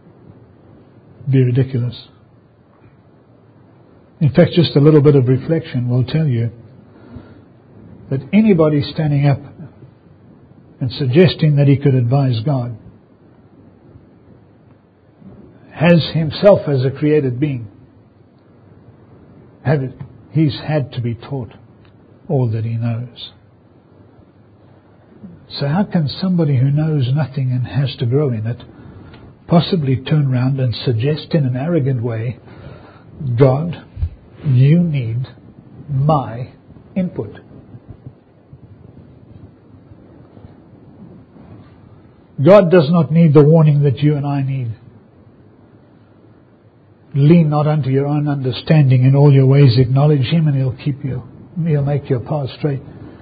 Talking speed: 110 wpm